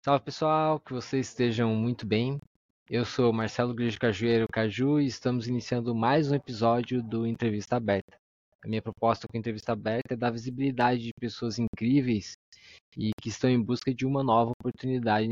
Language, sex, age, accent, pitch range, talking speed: Portuguese, male, 20-39, Brazilian, 115-140 Hz, 170 wpm